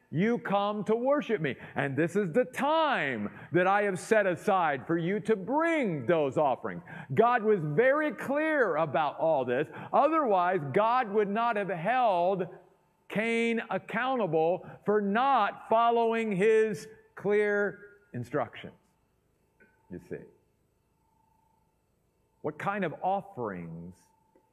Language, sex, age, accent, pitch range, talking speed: English, male, 50-69, American, 145-205 Hz, 115 wpm